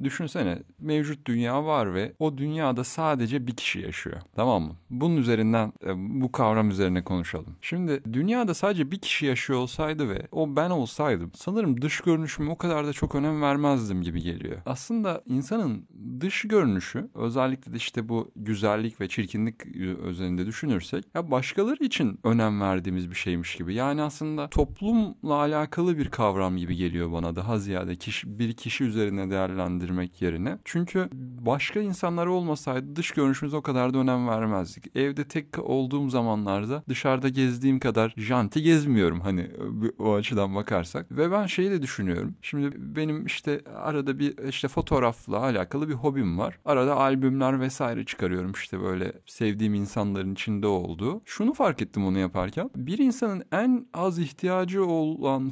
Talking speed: 150 wpm